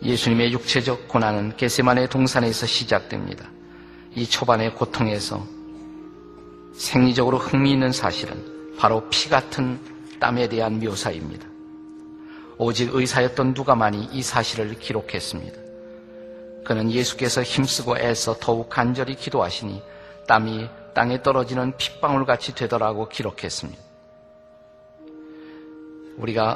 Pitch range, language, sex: 110-140 Hz, Korean, male